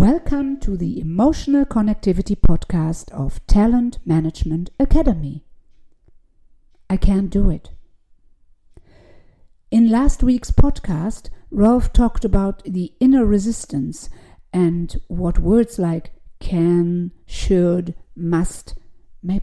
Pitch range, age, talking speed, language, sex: 150-230 Hz, 50-69, 100 wpm, English, female